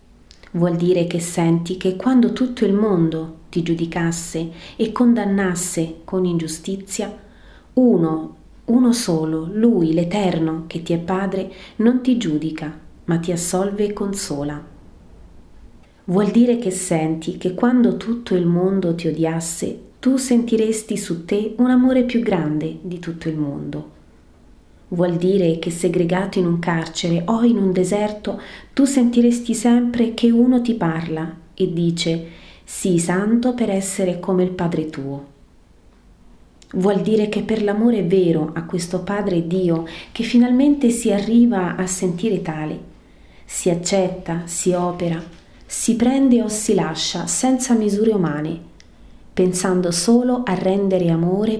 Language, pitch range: Italian, 165-215 Hz